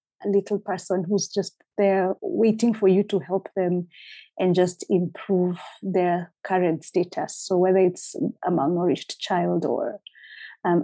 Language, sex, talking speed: English, female, 140 wpm